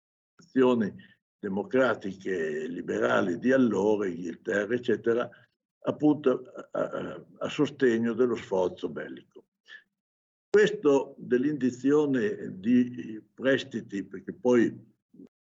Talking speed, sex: 80 wpm, male